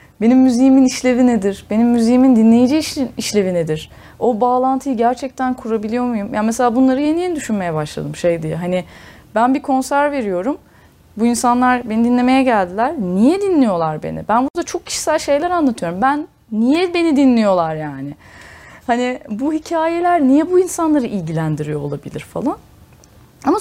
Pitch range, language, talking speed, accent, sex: 210-310 Hz, Turkish, 145 wpm, native, female